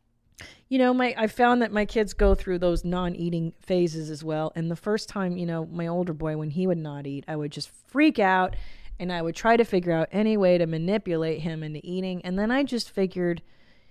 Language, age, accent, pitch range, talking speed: English, 20-39, American, 160-205 Hz, 230 wpm